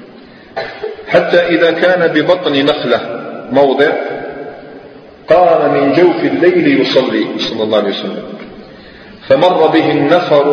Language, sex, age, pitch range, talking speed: Arabic, male, 40-59, 130-160 Hz, 105 wpm